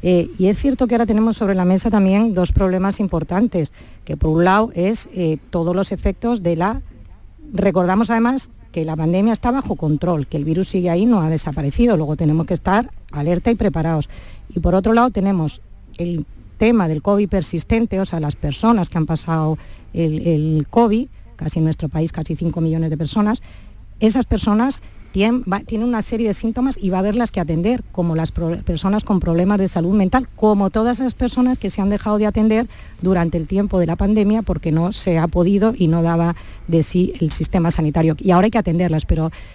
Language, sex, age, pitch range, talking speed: Spanish, female, 40-59, 160-210 Hz, 200 wpm